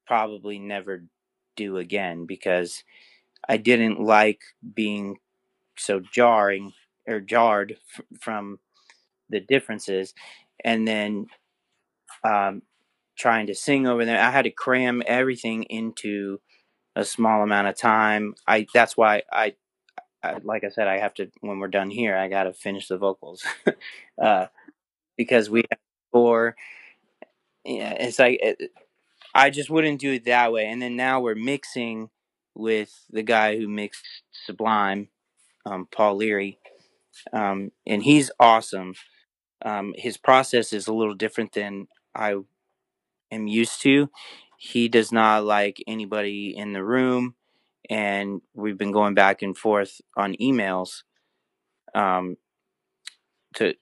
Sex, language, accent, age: male, English, American, 30-49